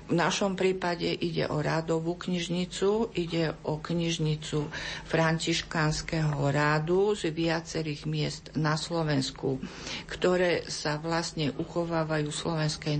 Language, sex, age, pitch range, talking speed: Slovak, female, 50-69, 150-165 Hz, 100 wpm